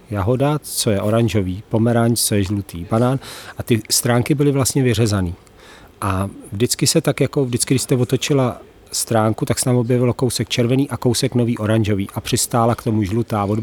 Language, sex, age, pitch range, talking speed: Slovak, male, 40-59, 110-130 Hz, 180 wpm